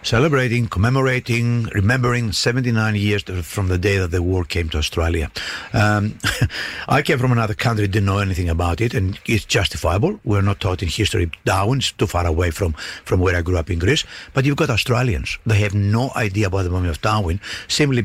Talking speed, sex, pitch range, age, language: 195 wpm, male, 95-130 Hz, 60-79, English